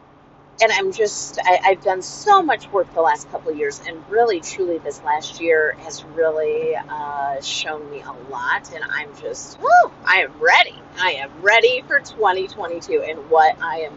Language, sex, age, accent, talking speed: English, female, 30-49, American, 185 wpm